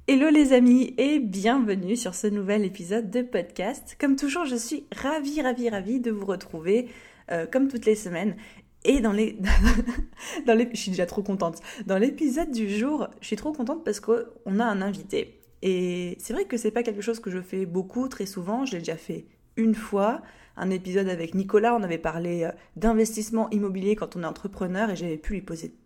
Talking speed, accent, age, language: 205 wpm, French, 20-39, French